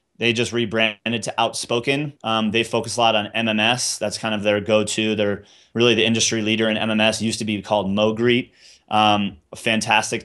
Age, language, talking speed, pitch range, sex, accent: 30-49, English, 195 wpm, 105-120 Hz, male, American